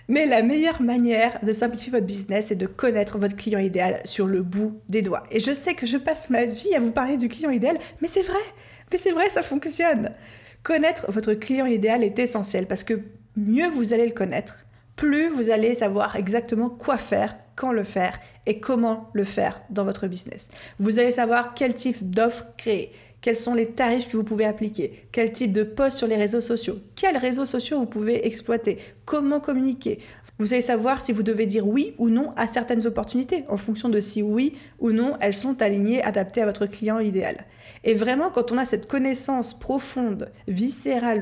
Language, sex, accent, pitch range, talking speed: French, female, French, 210-255 Hz, 200 wpm